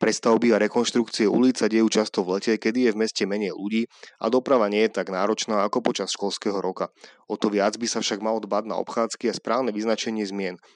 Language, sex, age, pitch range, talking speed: Slovak, male, 20-39, 100-115 Hz, 210 wpm